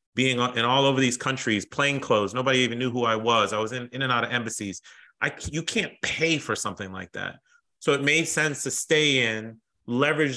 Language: English